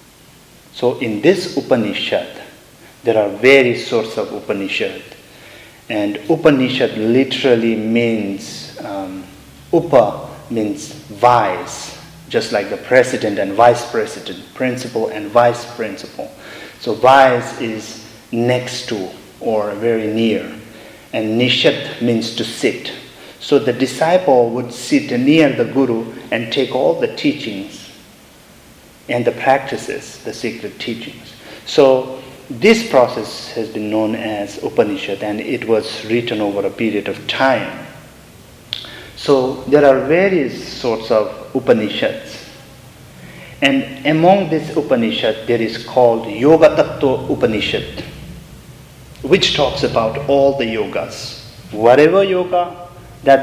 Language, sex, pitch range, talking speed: English, male, 110-140 Hz, 115 wpm